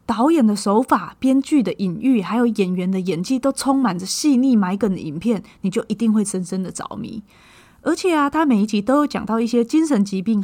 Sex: female